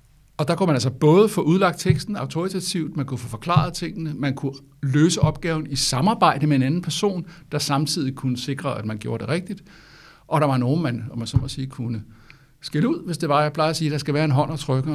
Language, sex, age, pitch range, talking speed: Danish, male, 60-79, 130-160 Hz, 245 wpm